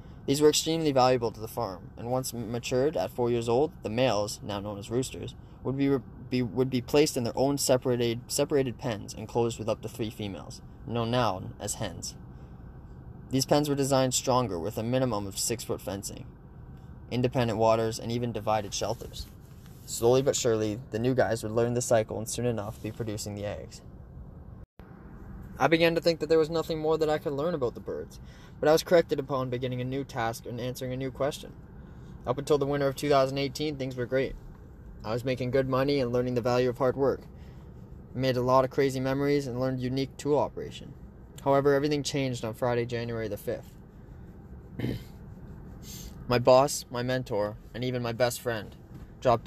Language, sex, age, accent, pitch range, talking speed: English, male, 20-39, American, 110-135 Hz, 190 wpm